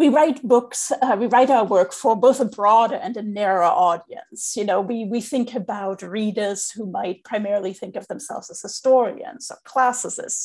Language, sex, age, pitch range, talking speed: English, female, 40-59, 215-285 Hz, 190 wpm